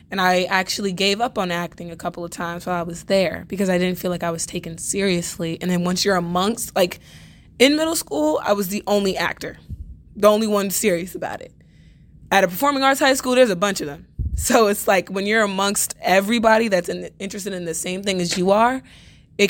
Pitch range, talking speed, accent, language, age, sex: 175-205 Hz, 220 wpm, American, English, 20-39, female